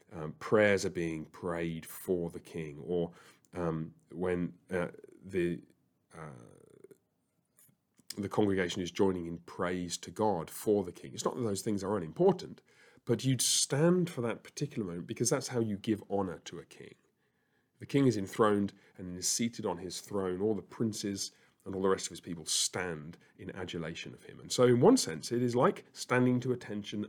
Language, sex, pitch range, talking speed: English, male, 90-120 Hz, 185 wpm